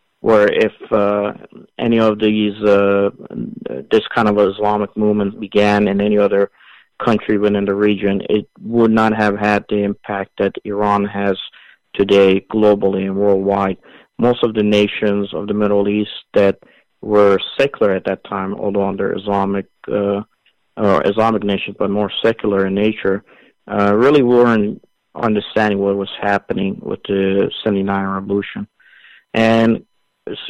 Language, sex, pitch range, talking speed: English, male, 100-110 Hz, 145 wpm